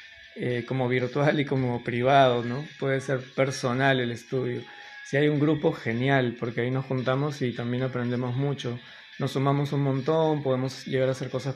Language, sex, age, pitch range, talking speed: Spanish, male, 20-39, 125-140 Hz, 175 wpm